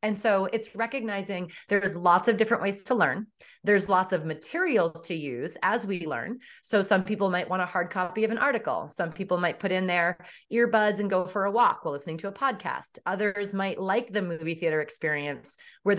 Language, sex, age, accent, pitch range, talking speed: English, female, 30-49, American, 175-225 Hz, 210 wpm